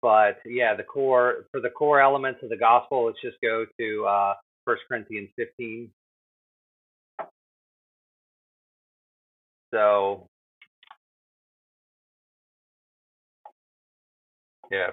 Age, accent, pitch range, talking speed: 30-49, American, 110-135 Hz, 85 wpm